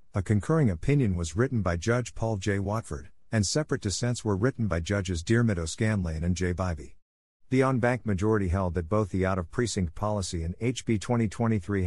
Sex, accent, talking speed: male, American, 185 wpm